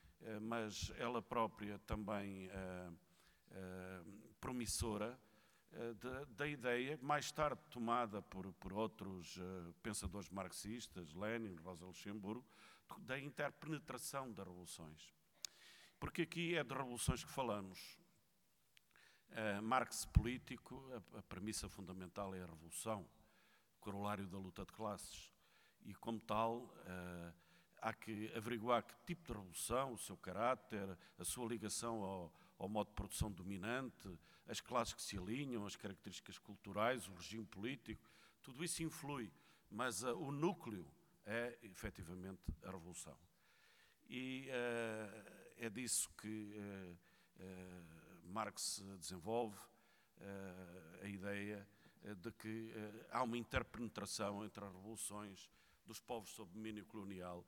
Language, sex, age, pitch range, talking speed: Portuguese, male, 50-69, 95-120 Hz, 120 wpm